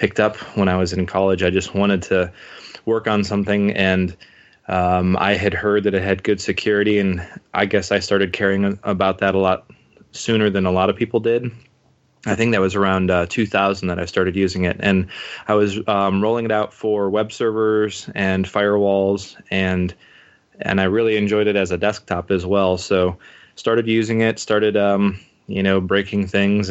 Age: 20-39